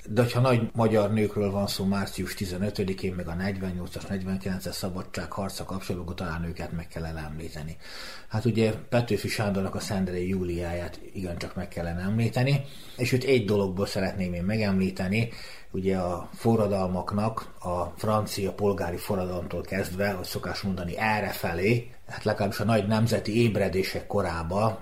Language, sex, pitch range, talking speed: Hungarian, male, 90-105 Hz, 135 wpm